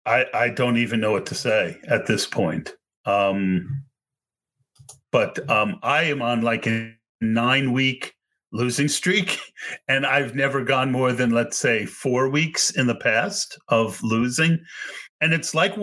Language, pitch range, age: English, 120-160 Hz, 40-59